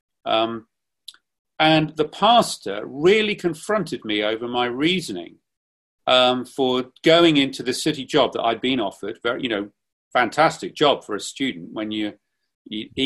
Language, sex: English, male